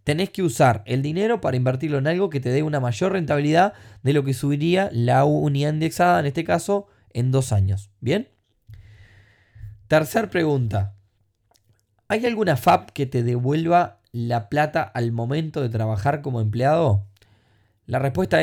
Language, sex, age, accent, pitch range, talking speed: Spanish, male, 20-39, Argentinian, 110-155 Hz, 155 wpm